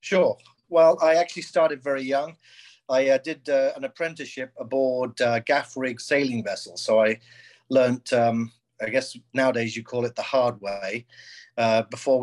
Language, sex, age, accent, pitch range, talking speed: English, male, 40-59, British, 115-135 Hz, 165 wpm